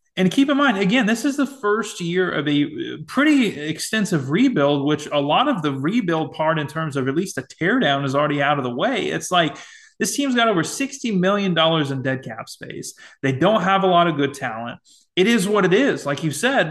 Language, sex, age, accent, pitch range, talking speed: English, male, 20-39, American, 140-185 Hz, 230 wpm